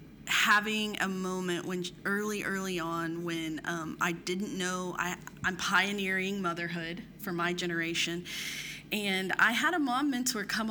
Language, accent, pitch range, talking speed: English, American, 175-205 Hz, 145 wpm